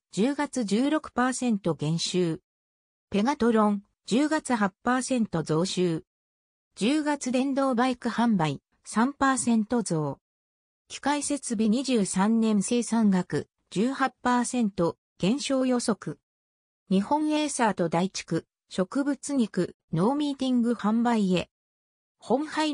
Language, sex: Japanese, female